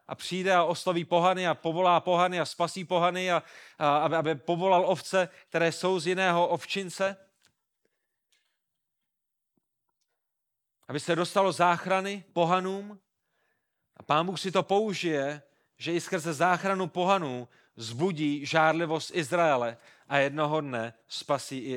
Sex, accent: male, native